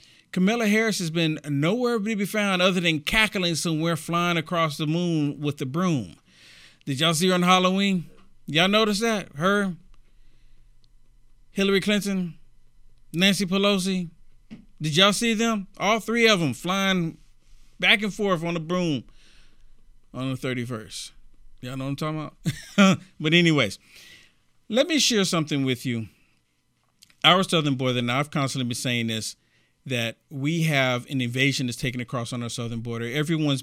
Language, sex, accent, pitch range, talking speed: English, male, American, 135-195 Hz, 155 wpm